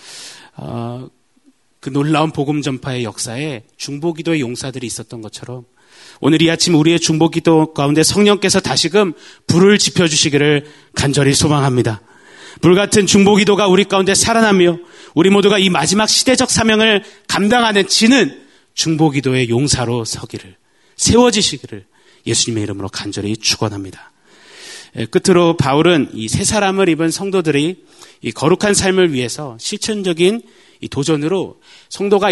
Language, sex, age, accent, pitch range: Korean, male, 30-49, native, 120-185 Hz